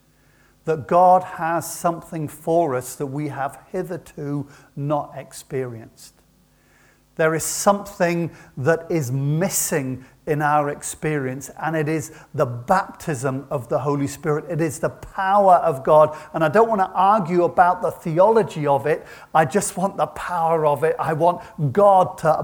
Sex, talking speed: male, 155 wpm